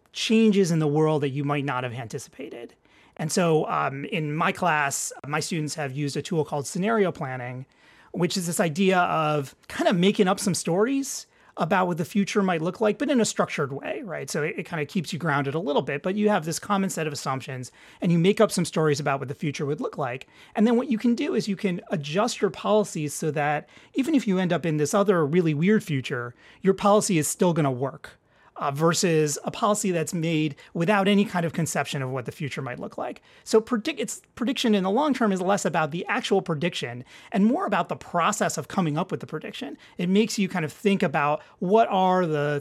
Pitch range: 145-200 Hz